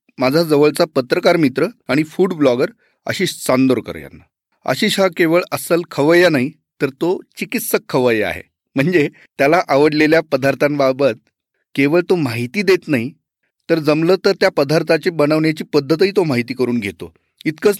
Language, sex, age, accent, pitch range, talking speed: Marathi, male, 40-59, native, 140-175 Hz, 140 wpm